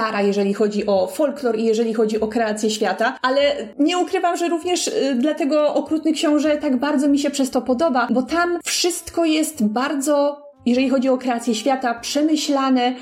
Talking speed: 165 wpm